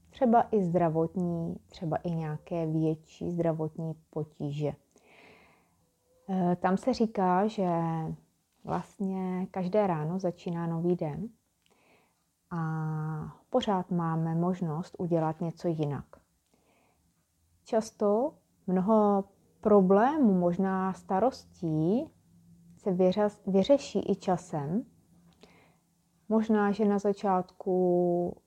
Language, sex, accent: Czech, female, native